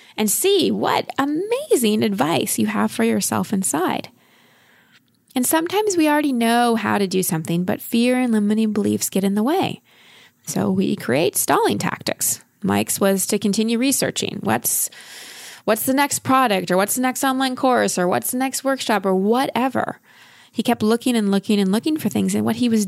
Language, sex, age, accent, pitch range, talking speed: English, female, 20-39, American, 195-255 Hz, 180 wpm